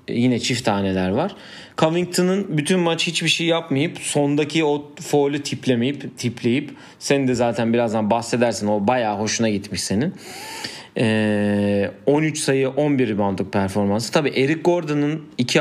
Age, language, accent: 40-59, Turkish, native